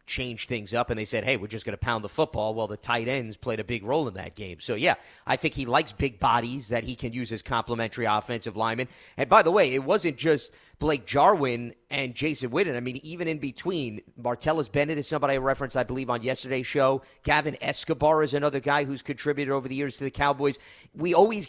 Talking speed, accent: 235 wpm, American